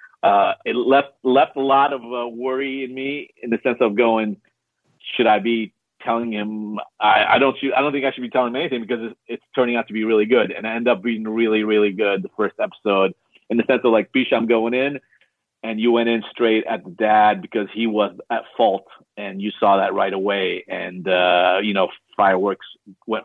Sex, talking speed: male, 225 wpm